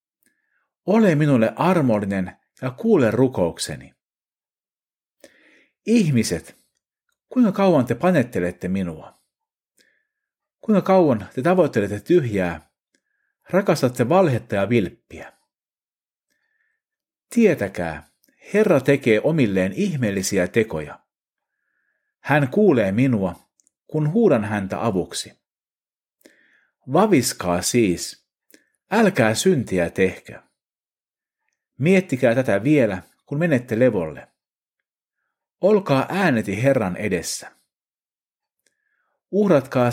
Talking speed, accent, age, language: 75 wpm, native, 50-69, Finnish